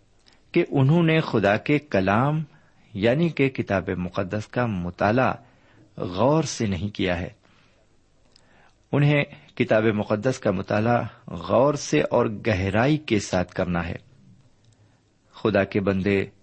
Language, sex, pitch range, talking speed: Urdu, male, 95-130 Hz, 120 wpm